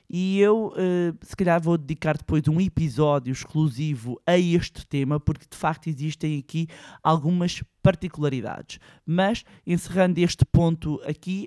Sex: male